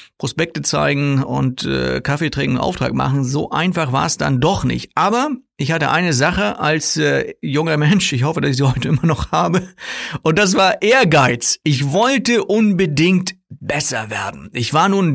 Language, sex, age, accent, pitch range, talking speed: German, male, 50-69, German, 140-190 Hz, 175 wpm